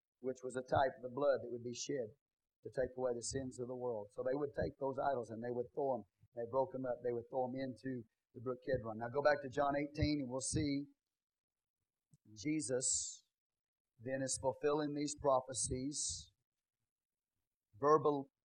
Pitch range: 130-170 Hz